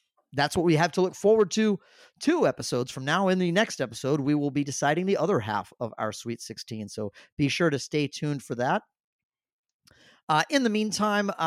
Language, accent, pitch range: English, American, 135-175 Hz